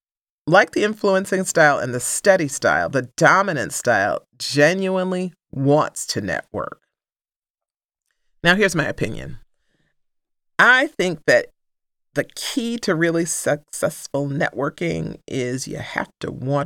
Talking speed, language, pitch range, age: 120 wpm, English, 130-175 Hz, 40-59